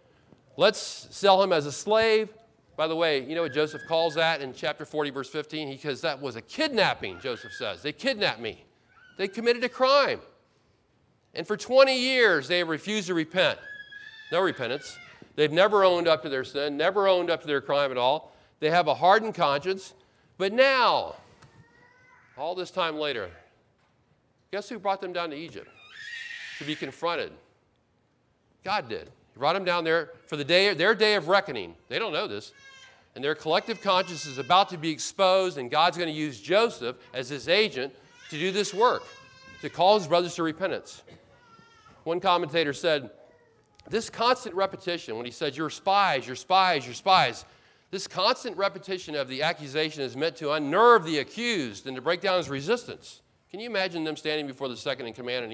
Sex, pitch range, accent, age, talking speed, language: male, 150-210 Hz, American, 40-59, 185 wpm, English